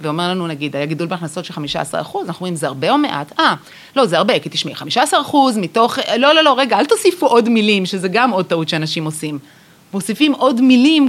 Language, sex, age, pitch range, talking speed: Hebrew, female, 30-49, 165-225 Hz, 220 wpm